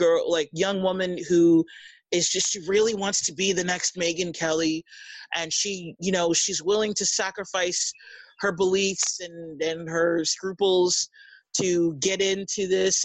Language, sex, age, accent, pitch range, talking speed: English, male, 30-49, American, 175-245 Hz, 150 wpm